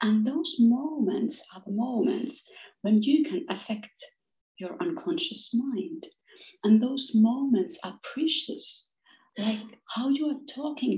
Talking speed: 125 wpm